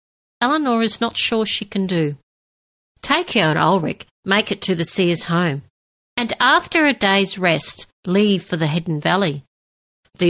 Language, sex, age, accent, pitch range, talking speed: English, female, 60-79, Australian, 150-200 Hz, 155 wpm